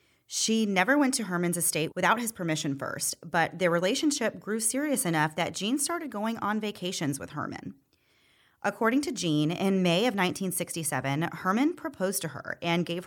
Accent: American